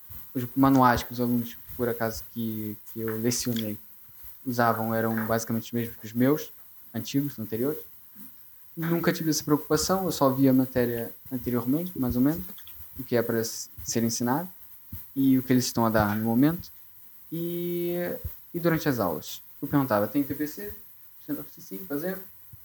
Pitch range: 115-150 Hz